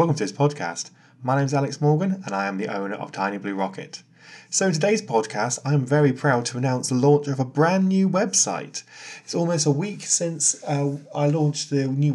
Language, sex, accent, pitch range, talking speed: English, male, British, 115-150 Hz, 215 wpm